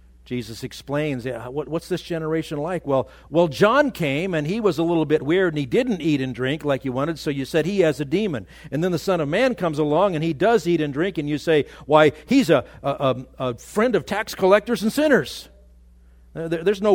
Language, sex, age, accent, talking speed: English, male, 50-69, American, 235 wpm